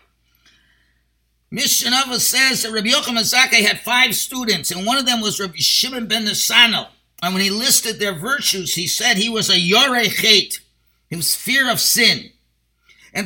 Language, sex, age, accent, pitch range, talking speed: English, male, 50-69, American, 190-260 Hz, 165 wpm